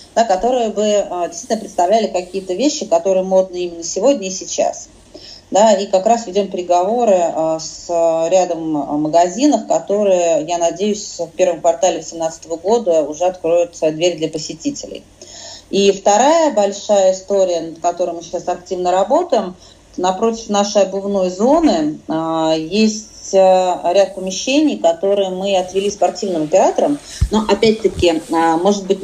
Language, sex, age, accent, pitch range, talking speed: Russian, female, 30-49, native, 170-210 Hz, 120 wpm